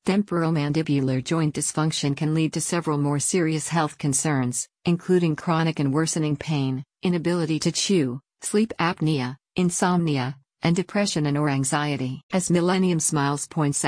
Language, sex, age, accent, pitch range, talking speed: English, female, 50-69, American, 145-165 Hz, 135 wpm